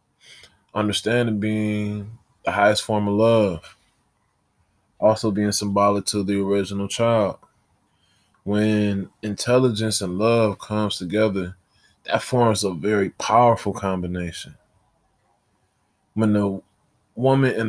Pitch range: 100-110 Hz